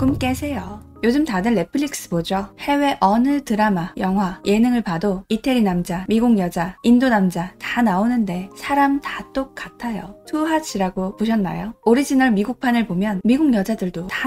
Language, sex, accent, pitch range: Korean, female, native, 195-255 Hz